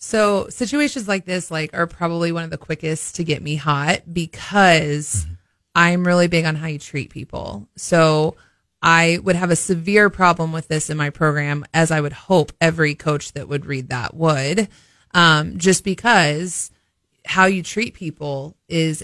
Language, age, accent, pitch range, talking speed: English, 30-49, American, 145-175 Hz, 175 wpm